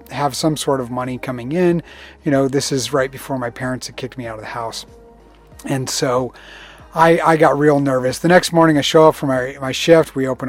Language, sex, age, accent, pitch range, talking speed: English, male, 30-49, American, 130-155 Hz, 235 wpm